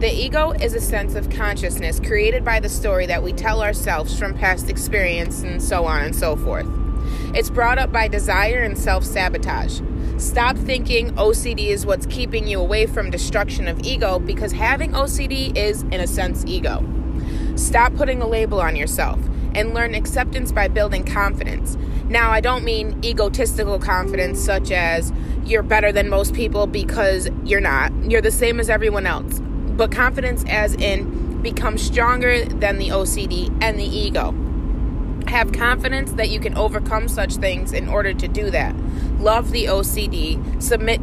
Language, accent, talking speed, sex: English, American, 165 wpm, female